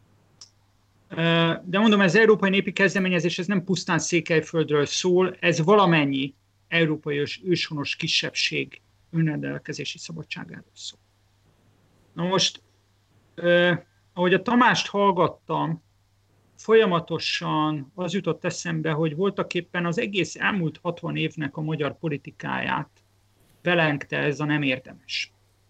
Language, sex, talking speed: Hungarian, male, 105 wpm